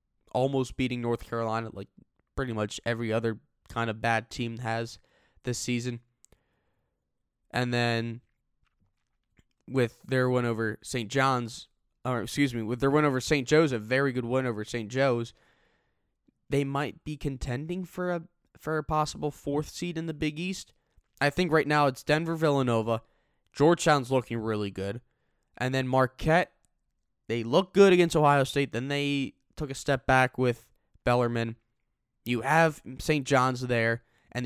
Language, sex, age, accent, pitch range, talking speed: English, male, 10-29, American, 115-150 Hz, 155 wpm